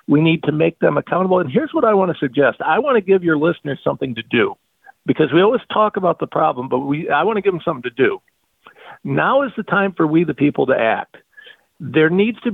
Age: 50-69